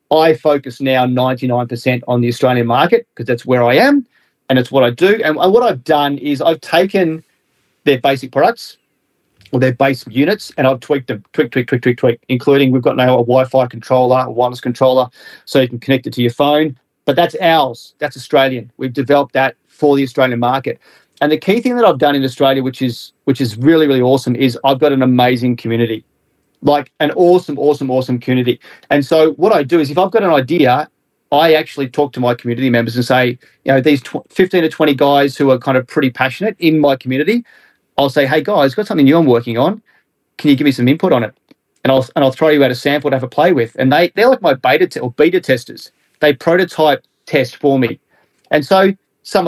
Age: 30-49